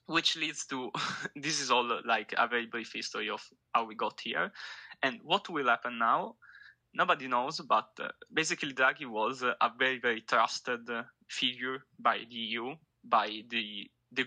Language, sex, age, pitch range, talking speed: English, male, 20-39, 115-130 Hz, 160 wpm